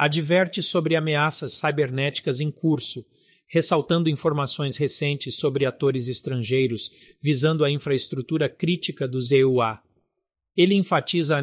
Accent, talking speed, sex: Brazilian, 110 wpm, male